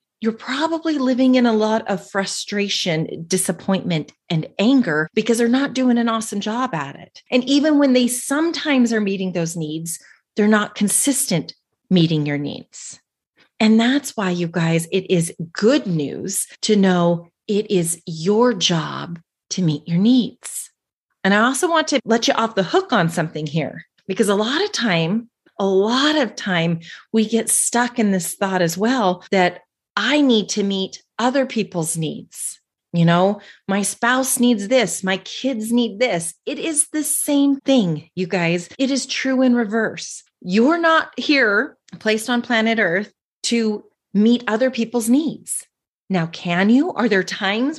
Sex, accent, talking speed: female, American, 165 wpm